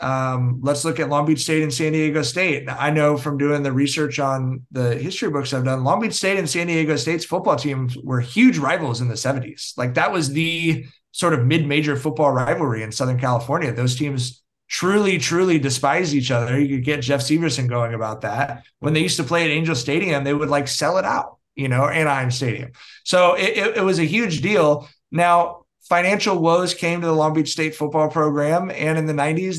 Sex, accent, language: male, American, English